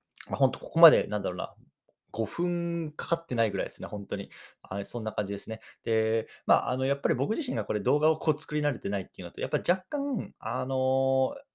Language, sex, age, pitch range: Japanese, male, 20-39, 110-165 Hz